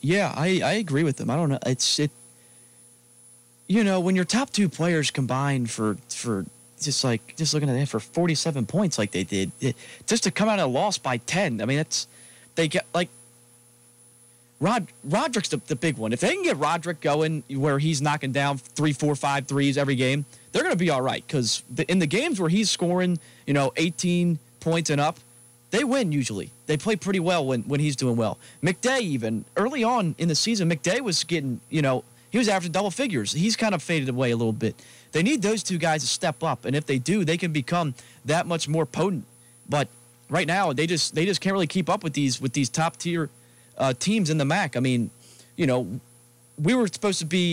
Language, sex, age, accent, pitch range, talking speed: English, male, 20-39, American, 120-175 Hz, 220 wpm